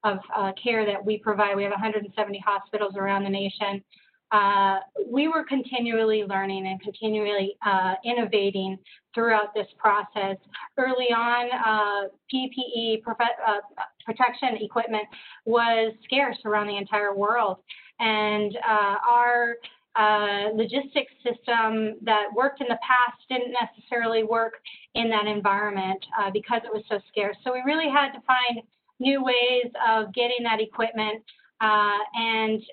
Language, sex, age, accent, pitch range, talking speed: English, female, 30-49, American, 210-245 Hz, 140 wpm